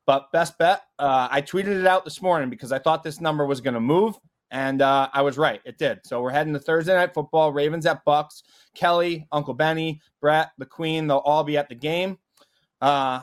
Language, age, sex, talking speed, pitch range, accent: English, 20-39, male, 220 wpm, 135-170 Hz, American